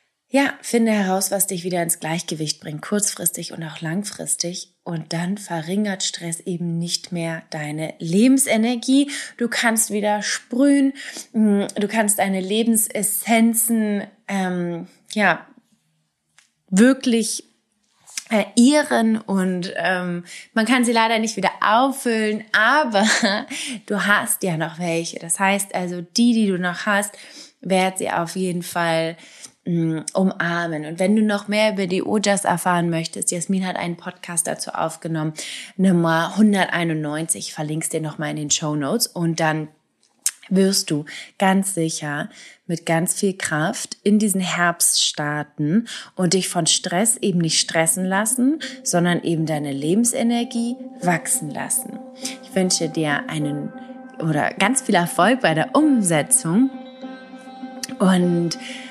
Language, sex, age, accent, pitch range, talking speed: English, female, 20-39, German, 170-225 Hz, 130 wpm